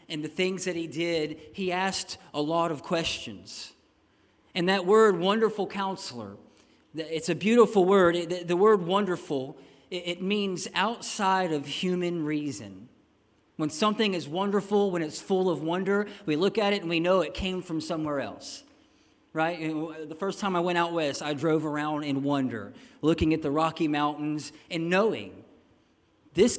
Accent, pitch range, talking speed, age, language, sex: American, 160-205 Hz, 160 wpm, 40-59, English, male